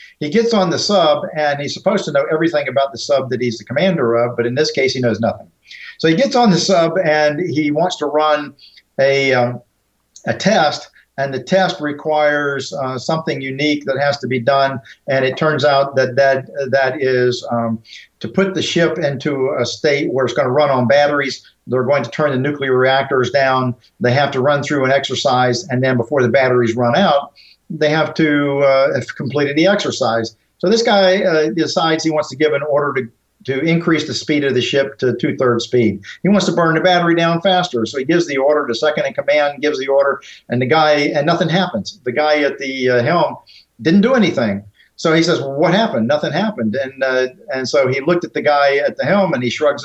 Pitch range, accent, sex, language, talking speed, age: 130-170 Hz, American, male, English, 225 wpm, 50-69